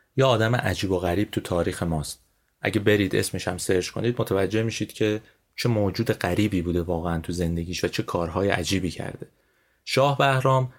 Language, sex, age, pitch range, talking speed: Persian, male, 30-49, 95-120 Hz, 170 wpm